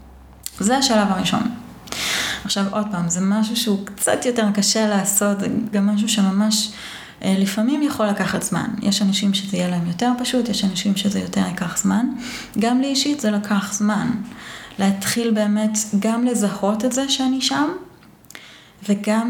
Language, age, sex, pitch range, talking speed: Hebrew, 30-49, female, 200-230 Hz, 150 wpm